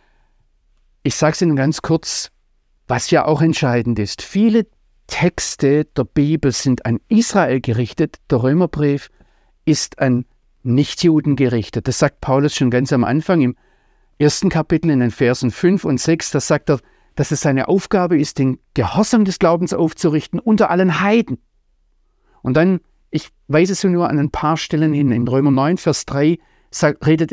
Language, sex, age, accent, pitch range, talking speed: German, male, 50-69, German, 130-180 Hz, 165 wpm